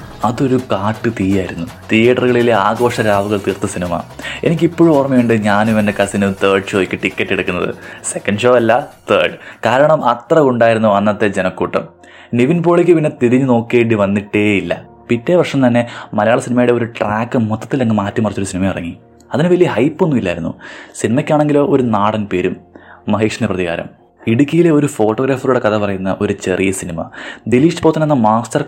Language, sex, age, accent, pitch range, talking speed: Malayalam, male, 20-39, native, 95-120 Hz, 130 wpm